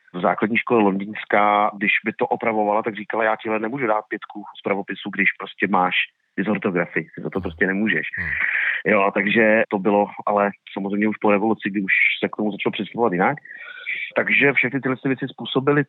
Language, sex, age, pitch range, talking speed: Czech, male, 30-49, 105-120 Hz, 180 wpm